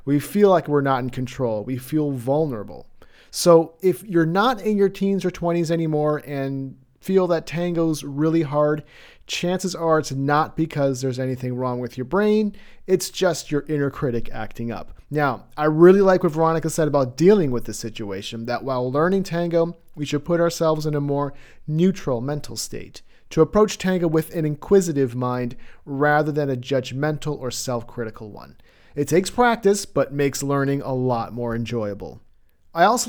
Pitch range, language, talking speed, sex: 135-175 Hz, English, 175 wpm, male